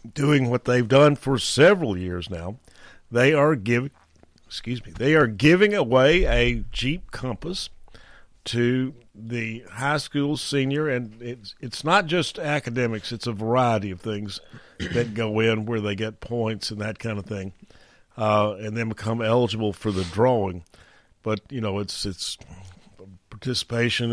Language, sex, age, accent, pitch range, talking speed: English, male, 50-69, American, 110-130 Hz, 155 wpm